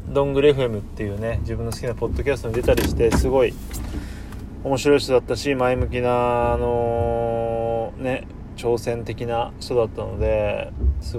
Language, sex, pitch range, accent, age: Japanese, male, 110-150 Hz, native, 20-39